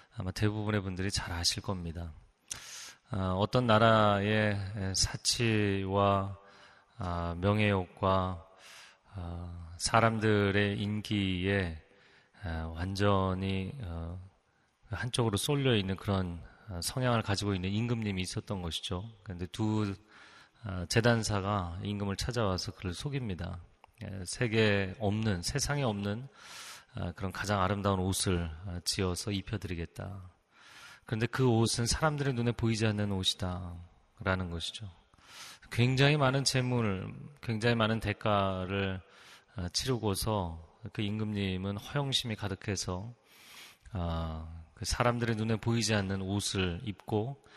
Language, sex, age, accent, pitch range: Korean, male, 30-49, native, 95-115 Hz